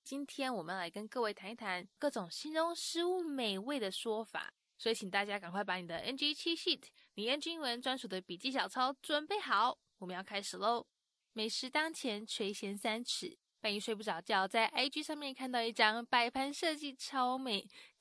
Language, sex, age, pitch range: English, female, 10-29, 205-260 Hz